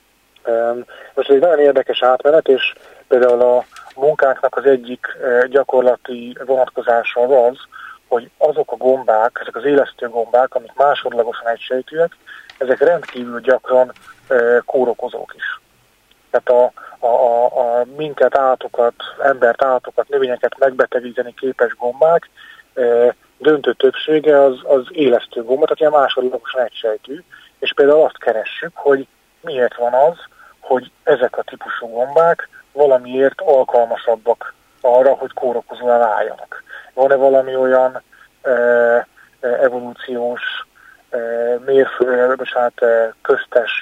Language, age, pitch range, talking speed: Hungarian, 30-49, 120-140 Hz, 110 wpm